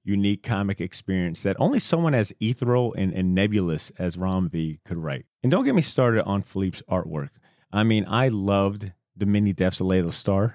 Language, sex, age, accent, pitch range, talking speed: English, male, 30-49, American, 95-120 Hz, 200 wpm